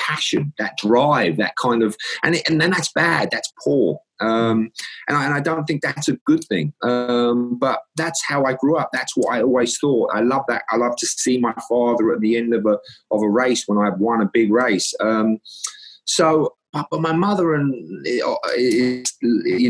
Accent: British